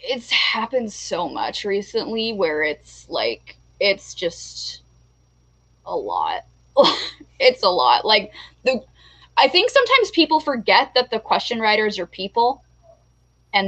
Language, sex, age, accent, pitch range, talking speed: English, female, 10-29, American, 180-275 Hz, 125 wpm